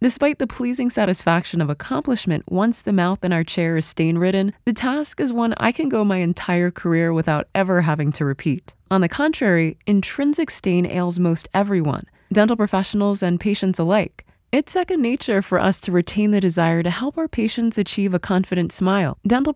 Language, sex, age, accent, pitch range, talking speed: English, female, 20-39, American, 175-230 Hz, 185 wpm